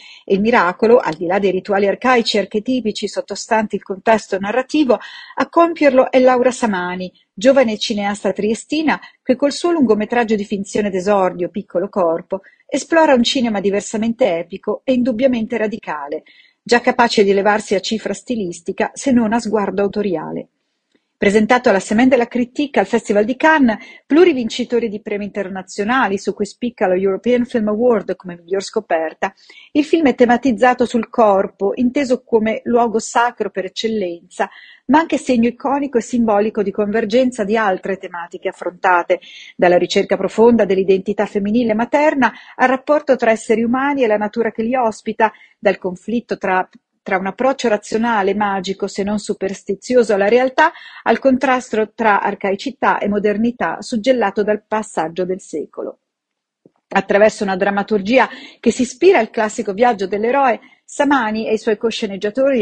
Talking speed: 150 wpm